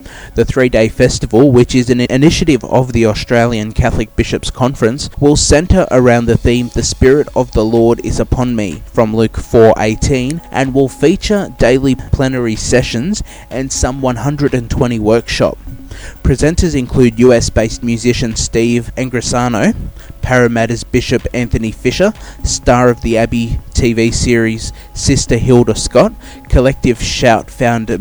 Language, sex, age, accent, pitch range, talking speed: English, male, 20-39, Australian, 110-130 Hz, 130 wpm